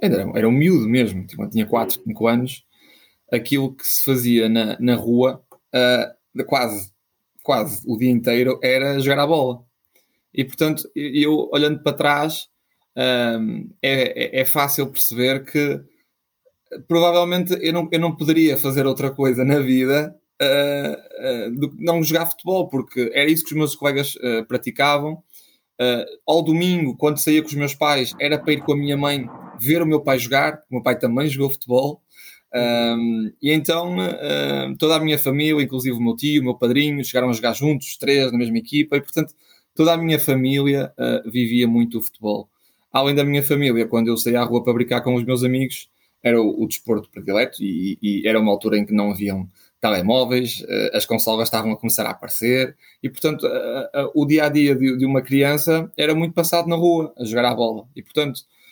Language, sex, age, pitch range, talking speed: Portuguese, male, 20-39, 120-150 Hz, 180 wpm